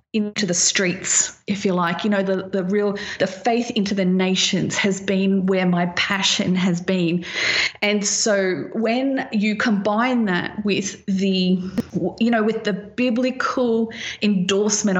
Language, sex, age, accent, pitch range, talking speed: English, female, 30-49, Australian, 185-225 Hz, 150 wpm